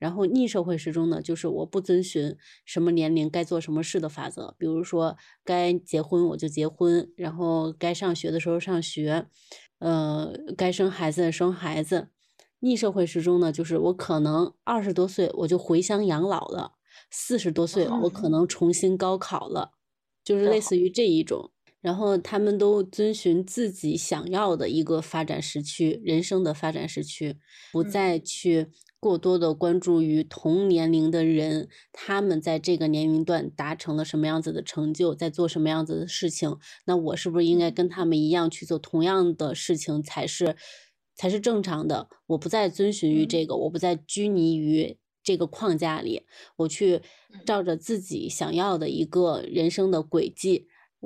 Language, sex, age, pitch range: Chinese, female, 20-39, 160-185 Hz